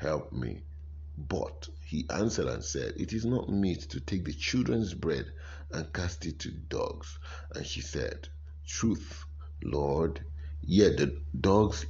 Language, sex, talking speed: English, male, 145 wpm